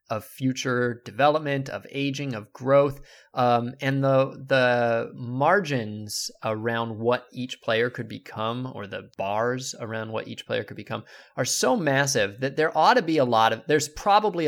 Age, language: 20-39, English